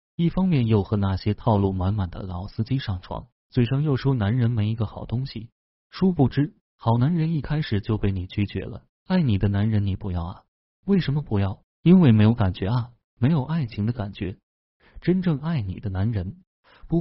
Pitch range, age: 100-135 Hz, 30-49